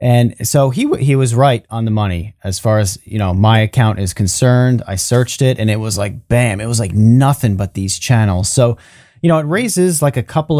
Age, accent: 30-49, American